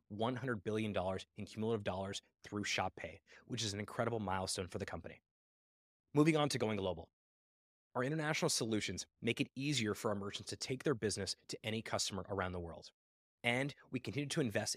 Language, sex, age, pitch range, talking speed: English, male, 20-39, 100-125 Hz, 180 wpm